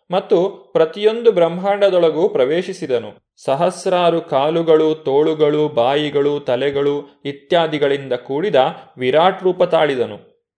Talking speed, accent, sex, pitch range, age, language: 80 wpm, native, male, 145-195 Hz, 20-39, Kannada